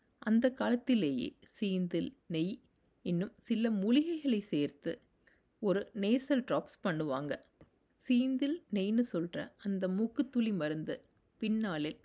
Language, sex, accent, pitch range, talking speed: Tamil, female, native, 160-235 Hz, 100 wpm